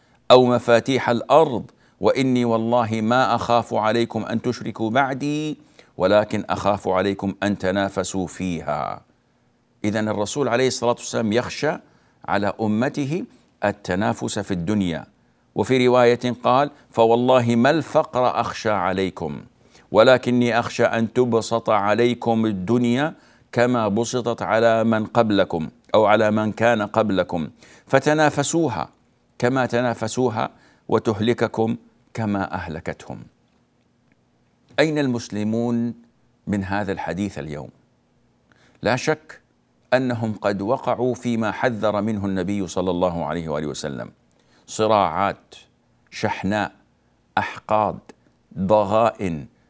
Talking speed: 100 wpm